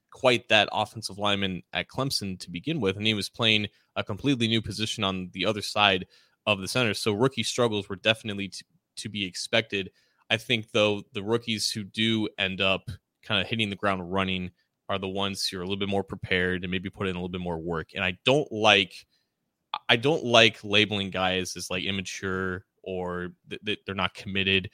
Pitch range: 95-110 Hz